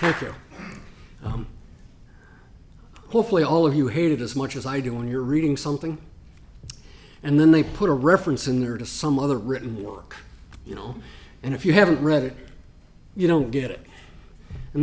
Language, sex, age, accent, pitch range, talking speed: English, male, 50-69, American, 120-155 Hz, 180 wpm